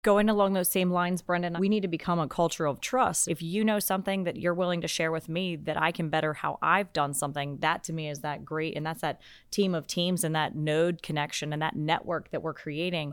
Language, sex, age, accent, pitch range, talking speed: English, female, 30-49, American, 150-180 Hz, 250 wpm